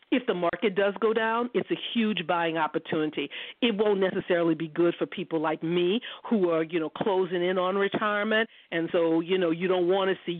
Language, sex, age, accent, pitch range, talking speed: English, female, 50-69, American, 165-195 Hz, 215 wpm